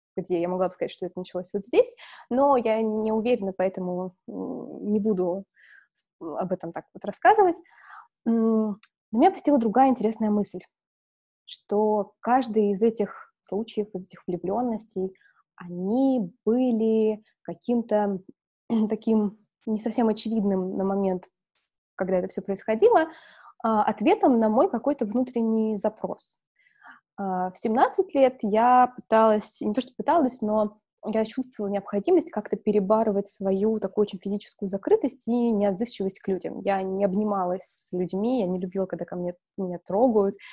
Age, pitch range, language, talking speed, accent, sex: 20-39, 195-245 Hz, Russian, 135 wpm, native, female